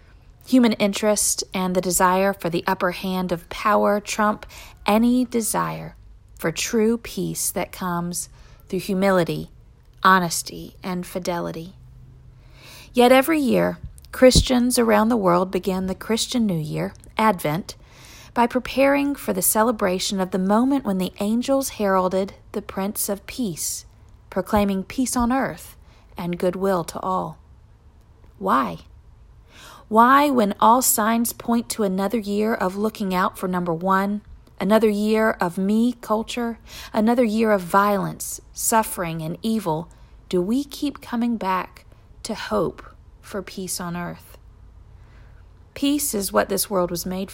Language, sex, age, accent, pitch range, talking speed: English, female, 40-59, American, 165-220 Hz, 135 wpm